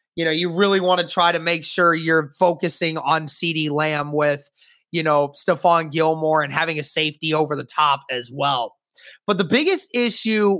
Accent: American